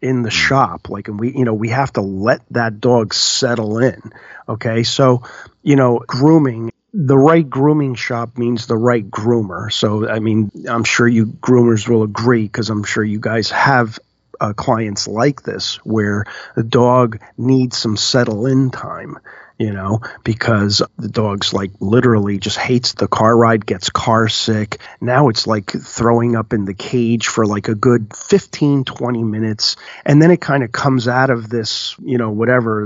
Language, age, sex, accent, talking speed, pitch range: English, 40-59, male, American, 180 wpm, 110-135 Hz